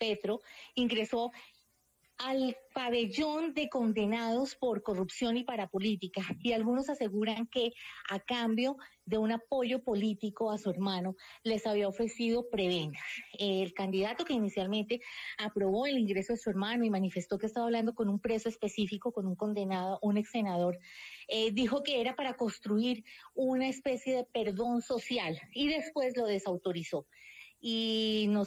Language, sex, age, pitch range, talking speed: Spanish, female, 30-49, 210-245 Hz, 150 wpm